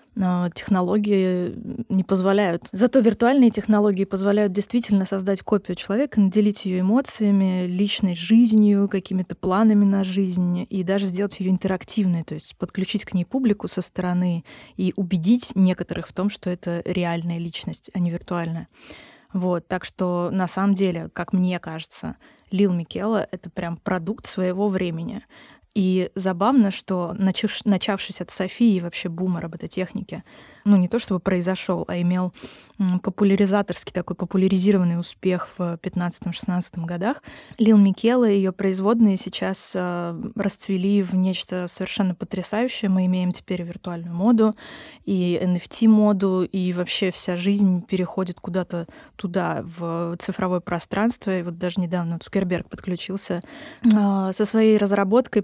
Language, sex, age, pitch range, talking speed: Russian, female, 20-39, 180-205 Hz, 135 wpm